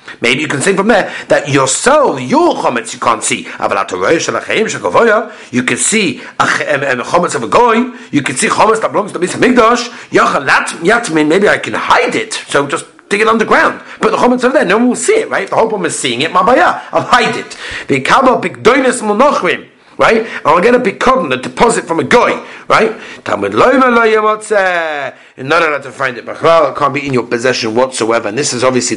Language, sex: English, male